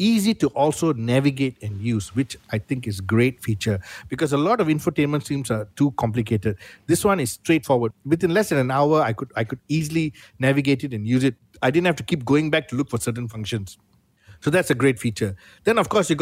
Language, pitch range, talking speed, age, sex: English, 115-155 Hz, 230 wpm, 60-79, male